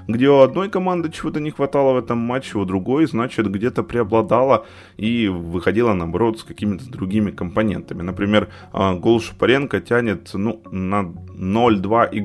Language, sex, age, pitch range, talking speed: Ukrainian, male, 20-39, 95-130 Hz, 140 wpm